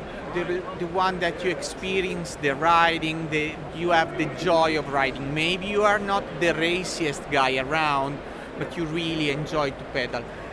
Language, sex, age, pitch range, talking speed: English, male, 40-59, 155-185 Hz, 160 wpm